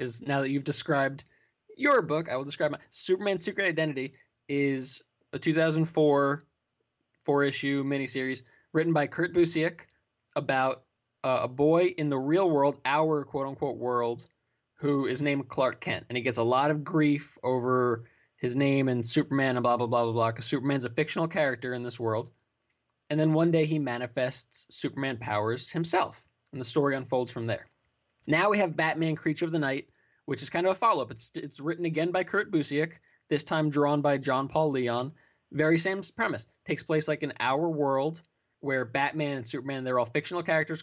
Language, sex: English, male